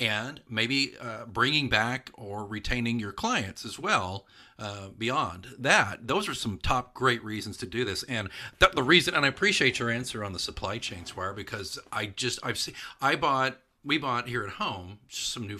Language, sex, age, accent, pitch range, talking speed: English, male, 40-59, American, 100-130 Hz, 200 wpm